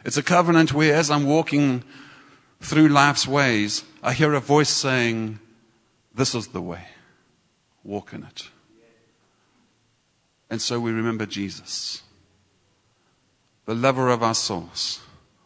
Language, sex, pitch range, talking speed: English, male, 105-130 Hz, 125 wpm